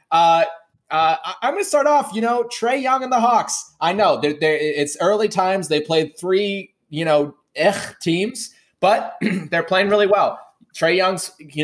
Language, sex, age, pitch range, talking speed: English, male, 20-39, 135-165 Hz, 185 wpm